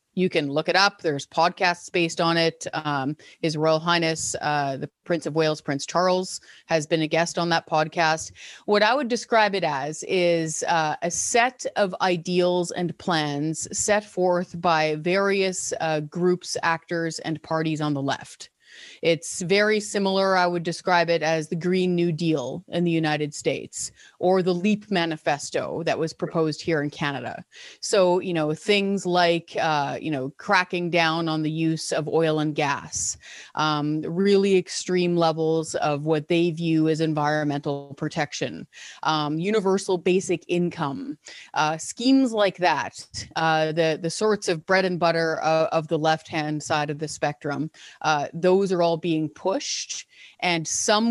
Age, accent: 30-49, American